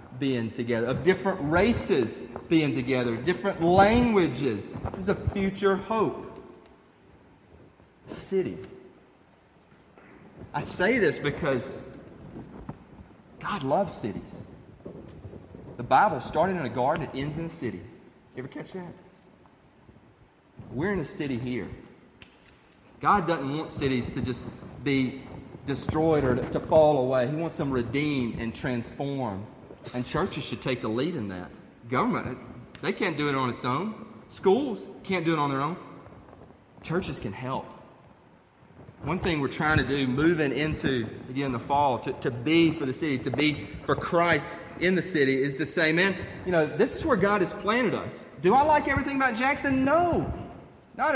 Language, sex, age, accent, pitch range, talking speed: English, male, 30-49, American, 130-180 Hz, 155 wpm